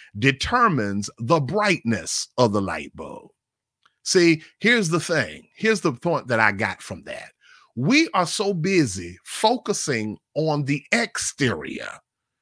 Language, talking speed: English, 130 wpm